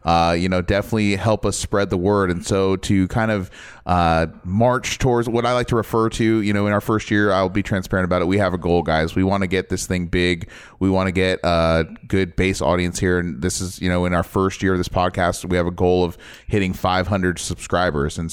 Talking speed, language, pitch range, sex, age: 250 wpm, English, 90-110 Hz, male, 30-49